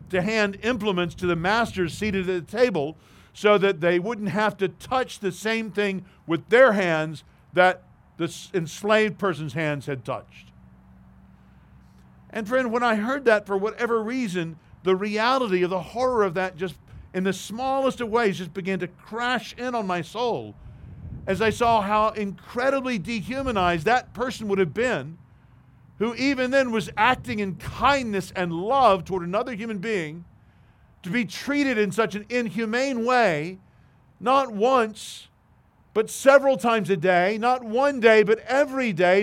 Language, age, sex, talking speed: English, 50-69, male, 160 wpm